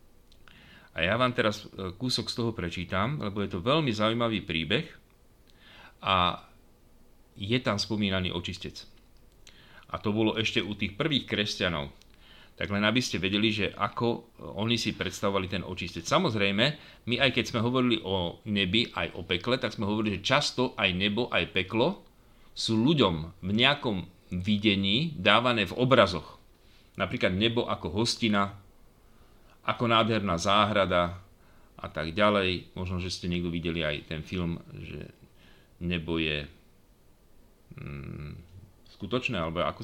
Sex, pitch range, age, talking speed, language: male, 90-115 Hz, 40-59, 140 wpm, Slovak